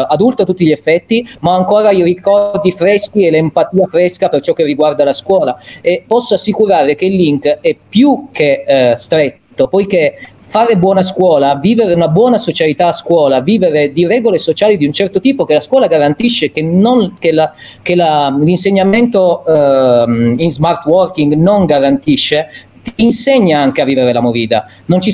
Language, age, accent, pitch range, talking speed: Italian, 30-49, native, 145-195 Hz, 175 wpm